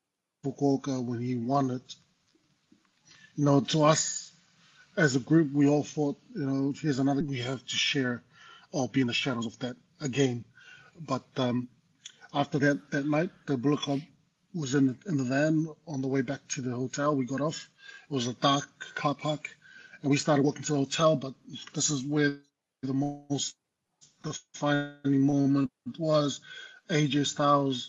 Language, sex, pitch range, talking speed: English, male, 130-150 Hz, 170 wpm